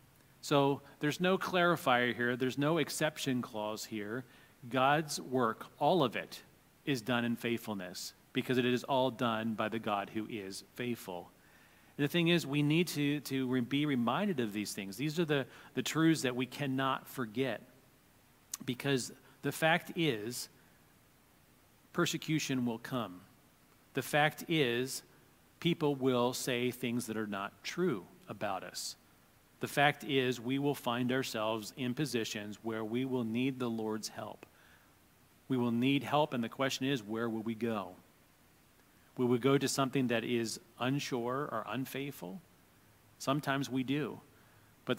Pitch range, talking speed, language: 115-140 Hz, 150 wpm, English